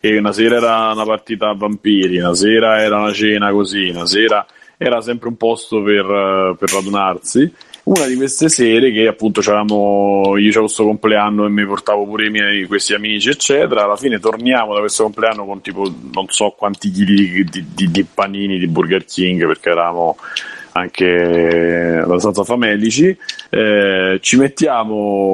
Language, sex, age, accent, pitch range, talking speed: Italian, male, 30-49, native, 100-115 Hz, 170 wpm